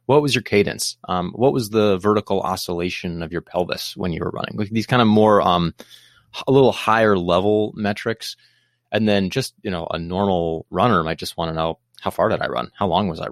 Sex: male